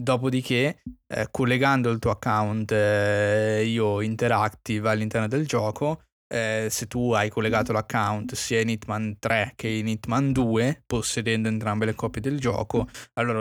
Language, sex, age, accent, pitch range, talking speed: Italian, male, 20-39, native, 110-130 Hz, 150 wpm